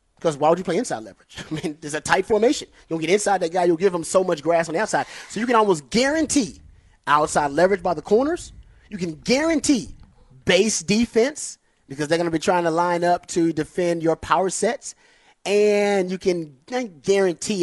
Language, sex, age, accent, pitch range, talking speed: English, male, 30-49, American, 150-205 Hz, 205 wpm